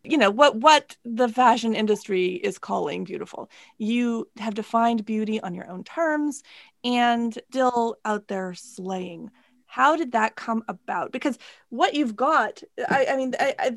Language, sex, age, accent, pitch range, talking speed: English, female, 30-49, American, 215-265 Hz, 155 wpm